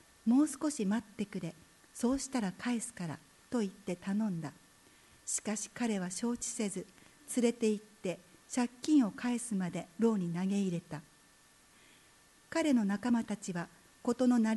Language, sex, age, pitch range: Japanese, female, 50-69, 185-240 Hz